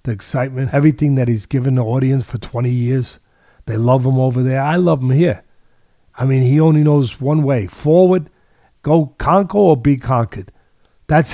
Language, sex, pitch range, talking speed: English, male, 125-160 Hz, 180 wpm